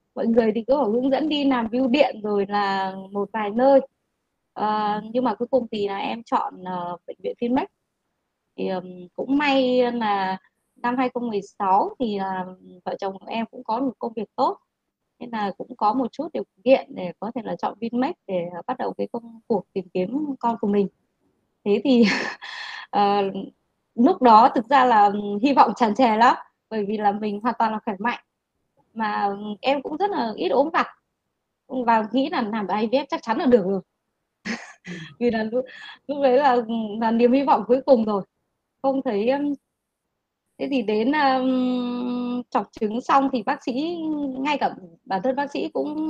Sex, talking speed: female, 190 wpm